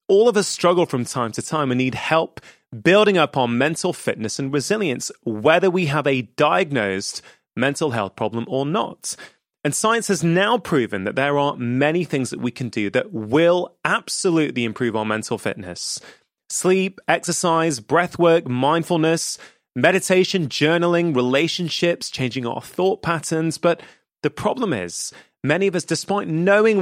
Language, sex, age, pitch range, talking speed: English, male, 30-49, 125-175 Hz, 155 wpm